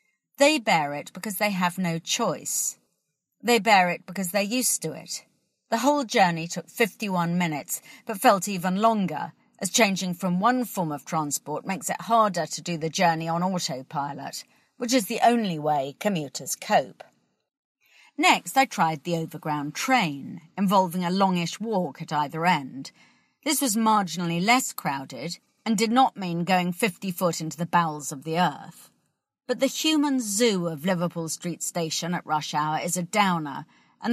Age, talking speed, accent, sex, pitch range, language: 40-59, 165 wpm, British, female, 160-225 Hz, English